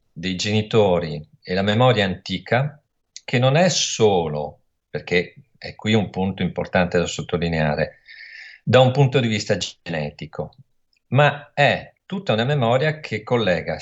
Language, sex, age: Italian, male, 50-69